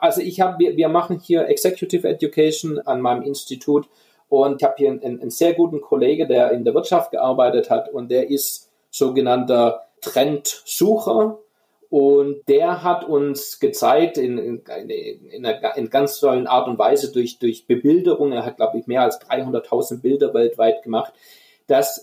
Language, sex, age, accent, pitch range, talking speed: German, male, 40-59, German, 140-225 Hz, 170 wpm